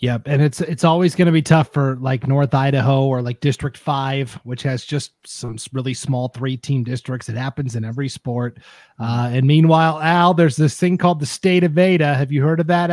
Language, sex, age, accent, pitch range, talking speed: English, male, 30-49, American, 125-155 Hz, 225 wpm